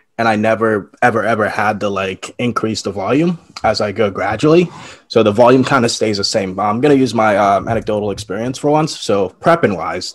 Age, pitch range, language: 20-39, 105-130 Hz, English